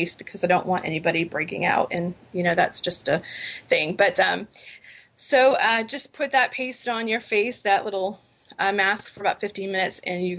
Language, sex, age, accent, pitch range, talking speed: English, female, 20-39, American, 180-220 Hz, 200 wpm